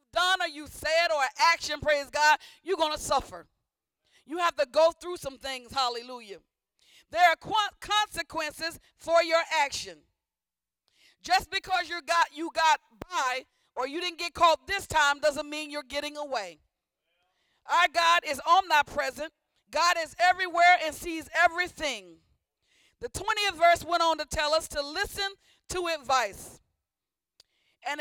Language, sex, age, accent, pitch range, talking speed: English, female, 40-59, American, 295-350 Hz, 145 wpm